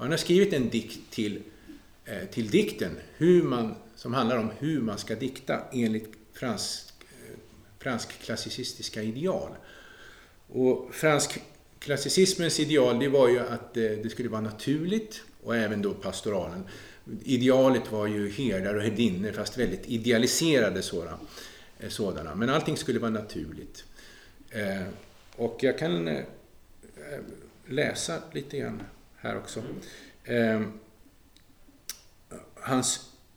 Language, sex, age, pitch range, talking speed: Swedish, male, 50-69, 110-140 Hz, 115 wpm